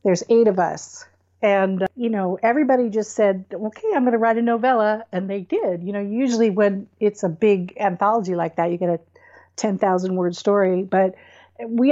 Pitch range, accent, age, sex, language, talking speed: 180-220 Hz, American, 50-69, female, English, 195 wpm